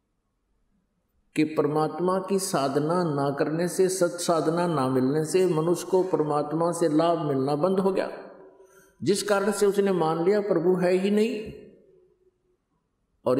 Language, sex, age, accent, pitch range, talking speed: Hindi, male, 50-69, native, 125-170 Hz, 140 wpm